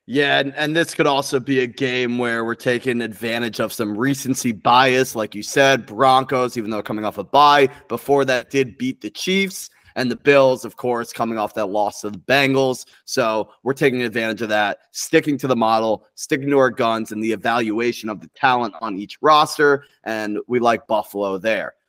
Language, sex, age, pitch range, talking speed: English, male, 30-49, 115-145 Hz, 200 wpm